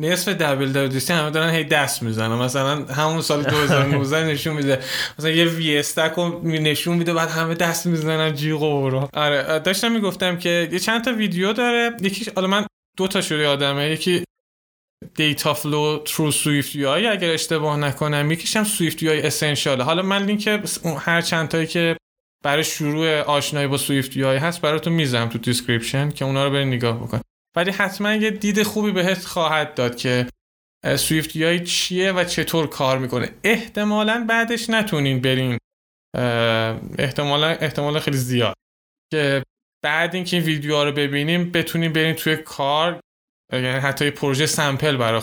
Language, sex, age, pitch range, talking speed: Persian, male, 20-39, 140-180 Hz, 165 wpm